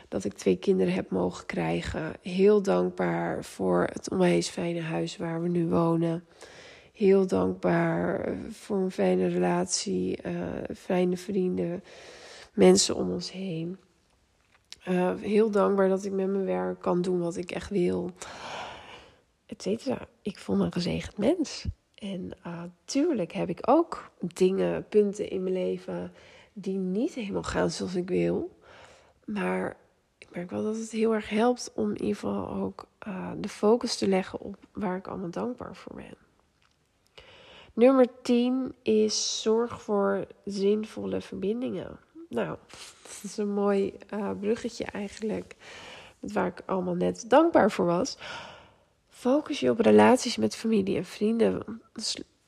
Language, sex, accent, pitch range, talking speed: Dutch, female, Dutch, 175-225 Hz, 145 wpm